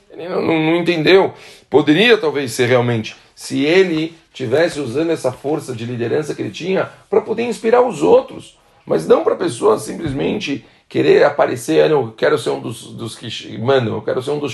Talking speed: 180 wpm